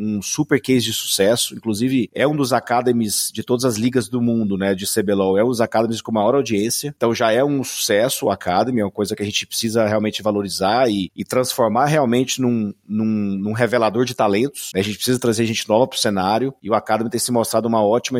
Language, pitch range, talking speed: Portuguese, 105-125 Hz, 225 wpm